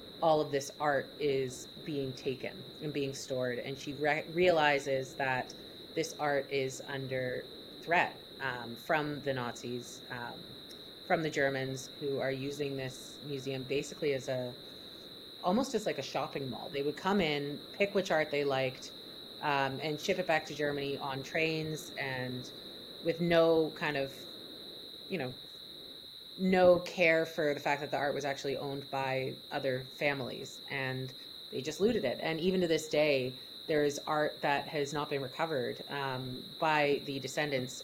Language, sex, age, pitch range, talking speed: English, female, 30-49, 135-160 Hz, 160 wpm